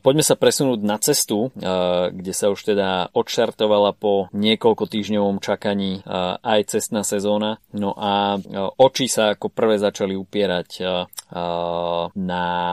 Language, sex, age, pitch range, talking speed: Slovak, male, 20-39, 90-105 Hz, 125 wpm